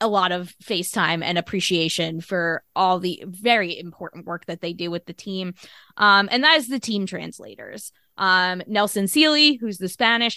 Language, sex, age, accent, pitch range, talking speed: English, female, 20-39, American, 185-230 Hz, 180 wpm